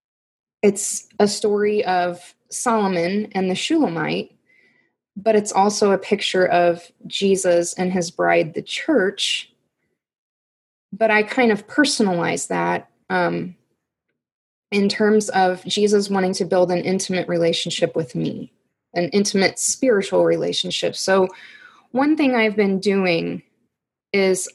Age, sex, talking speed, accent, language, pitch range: 20-39, female, 120 wpm, American, English, 175-210 Hz